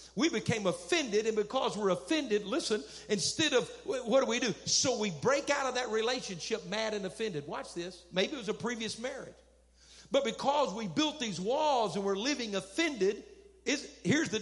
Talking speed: 185 wpm